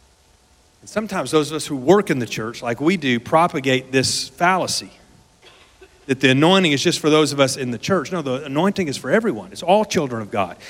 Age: 40-59